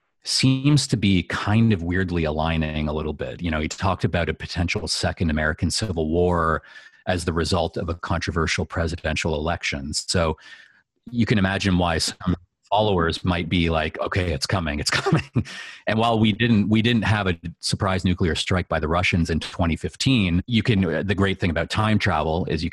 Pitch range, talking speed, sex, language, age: 80-95 Hz, 185 wpm, male, English, 30-49